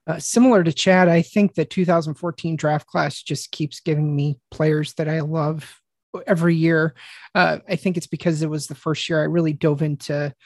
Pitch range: 150-170 Hz